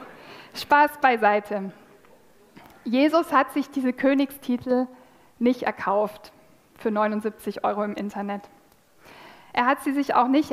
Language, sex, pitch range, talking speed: German, female, 225-275 Hz, 115 wpm